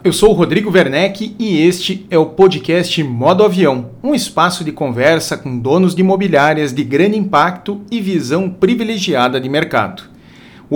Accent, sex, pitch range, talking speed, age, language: Brazilian, male, 140-190 Hz, 160 wpm, 40-59, Portuguese